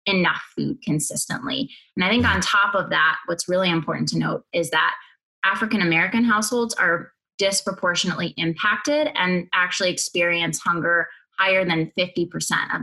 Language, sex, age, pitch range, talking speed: English, female, 20-39, 165-210 Hz, 145 wpm